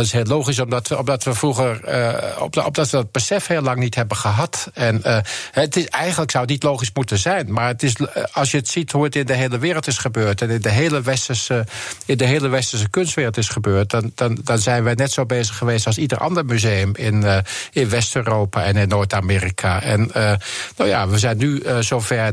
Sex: male